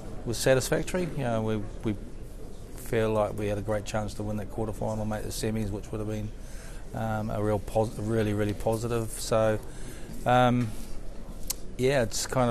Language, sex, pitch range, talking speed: English, male, 105-115 Hz, 175 wpm